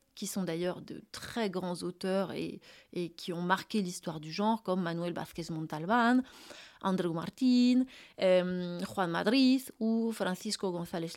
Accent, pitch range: French, 185-240 Hz